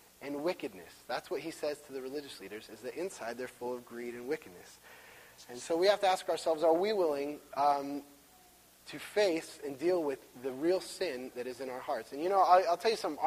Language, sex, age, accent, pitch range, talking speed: English, male, 20-39, American, 140-190 Hz, 230 wpm